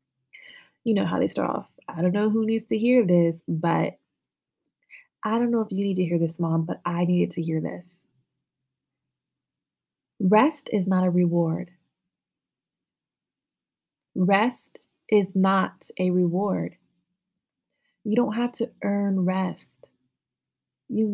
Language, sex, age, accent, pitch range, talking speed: English, female, 20-39, American, 175-205 Hz, 135 wpm